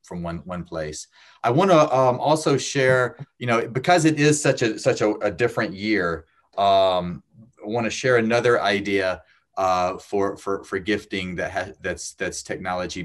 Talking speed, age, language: 180 wpm, 30-49, English